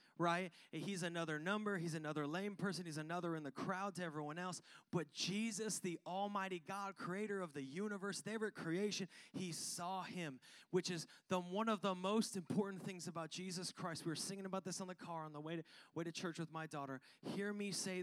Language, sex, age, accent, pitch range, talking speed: English, male, 30-49, American, 175-215 Hz, 210 wpm